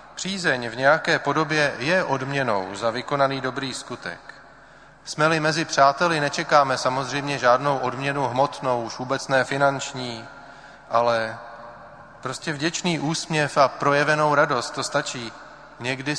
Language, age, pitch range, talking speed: Czech, 30-49, 120-145 Hz, 120 wpm